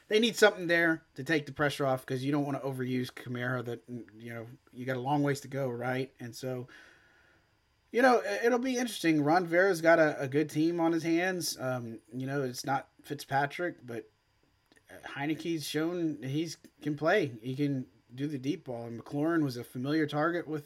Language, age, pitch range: English, 30-49, 125-155 Hz